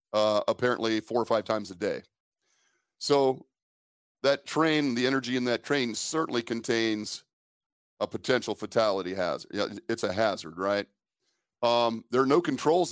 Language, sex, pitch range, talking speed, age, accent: English, male, 110-130 Hz, 150 wpm, 40-59, American